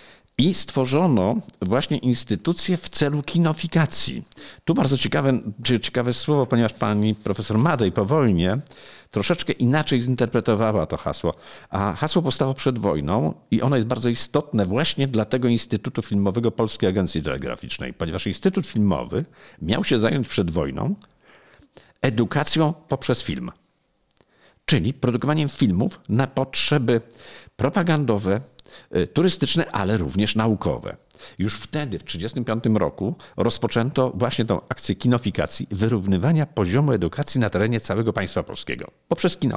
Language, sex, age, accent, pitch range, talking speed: Polish, male, 50-69, native, 100-135 Hz, 125 wpm